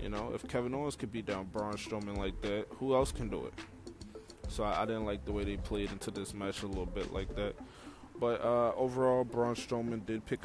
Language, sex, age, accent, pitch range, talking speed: English, male, 20-39, American, 105-130 Hz, 235 wpm